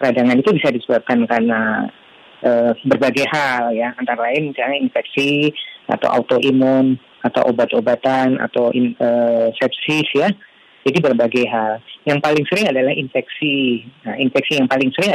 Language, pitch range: Indonesian, 125-150 Hz